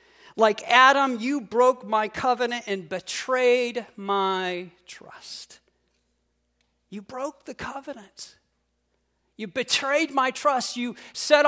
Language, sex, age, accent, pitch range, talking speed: English, male, 40-59, American, 190-265 Hz, 105 wpm